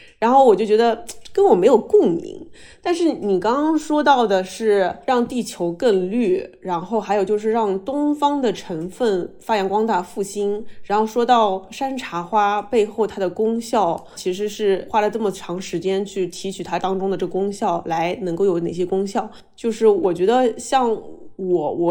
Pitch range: 190-265 Hz